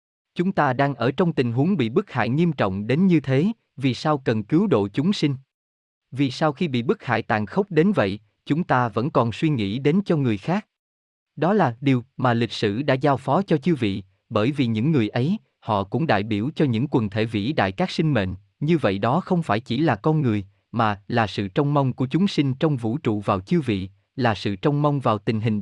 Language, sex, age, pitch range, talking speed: Vietnamese, male, 20-39, 110-155 Hz, 240 wpm